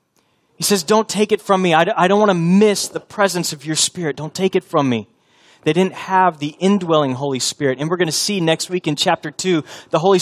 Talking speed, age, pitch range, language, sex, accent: 240 wpm, 30-49, 150-190 Hz, English, male, American